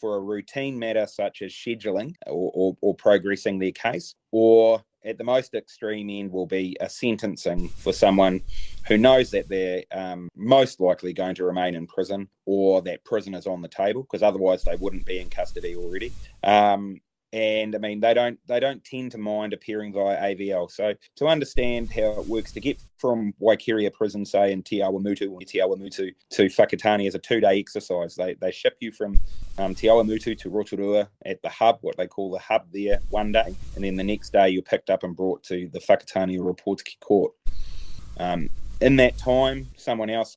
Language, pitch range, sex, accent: English, 95-110 Hz, male, Australian